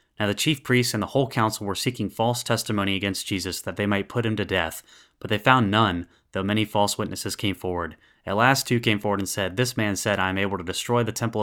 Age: 20-39